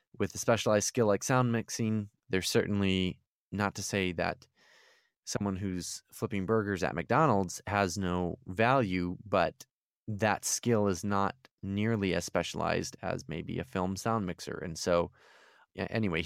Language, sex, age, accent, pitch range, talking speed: English, male, 20-39, American, 90-110 Hz, 150 wpm